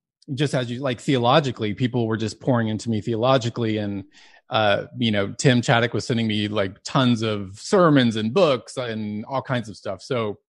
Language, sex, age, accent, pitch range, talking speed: English, male, 30-49, American, 115-140 Hz, 190 wpm